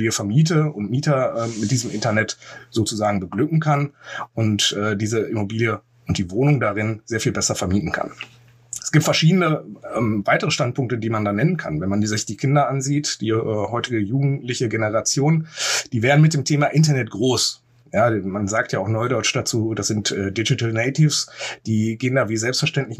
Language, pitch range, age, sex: German, 115-150 Hz, 30-49, male